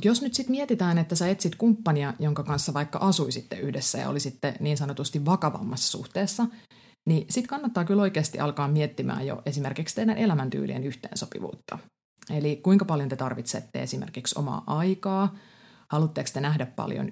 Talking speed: 150 wpm